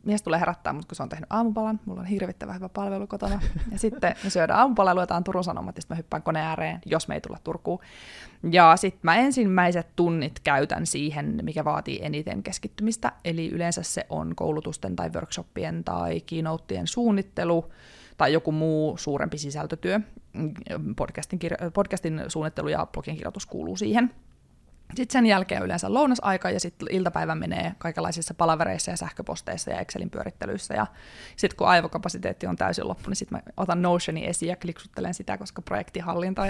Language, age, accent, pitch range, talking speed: Finnish, 20-39, native, 165-200 Hz, 165 wpm